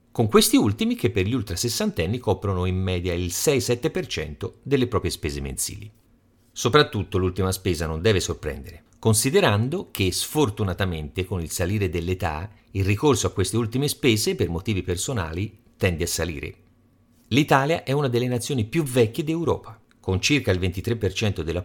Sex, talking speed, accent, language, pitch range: male, 150 wpm, native, Italian, 95-130 Hz